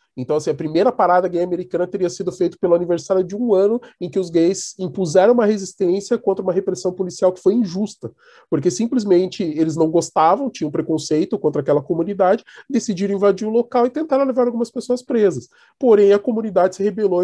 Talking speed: 190 wpm